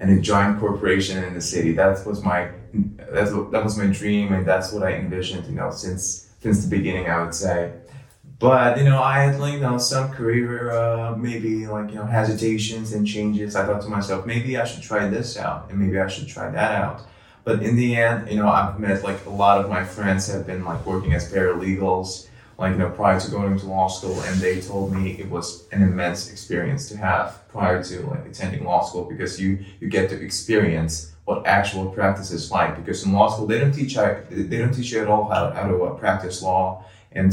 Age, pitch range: 20-39, 90-110 Hz